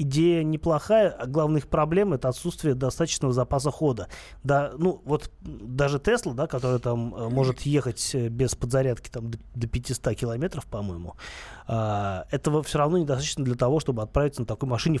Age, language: 20-39, Russian